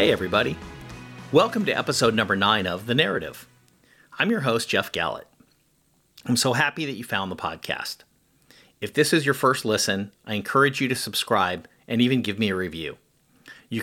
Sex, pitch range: male, 105-135 Hz